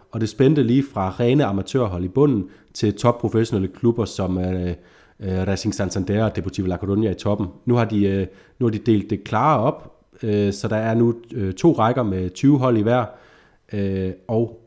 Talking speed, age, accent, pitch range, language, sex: 195 wpm, 30-49, native, 95-115 Hz, Danish, male